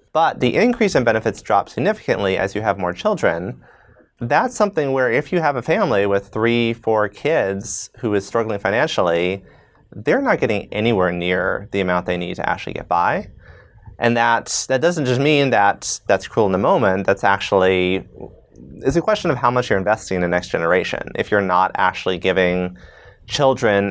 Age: 30-49